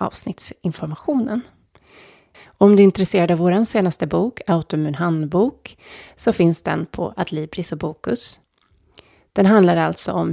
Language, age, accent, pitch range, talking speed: Swedish, 30-49, native, 165-205 Hz, 130 wpm